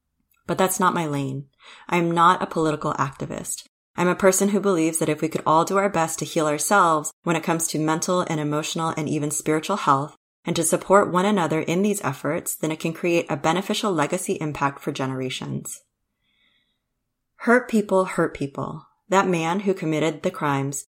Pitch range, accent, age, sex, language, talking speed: 145-180 Hz, American, 20-39, female, English, 190 wpm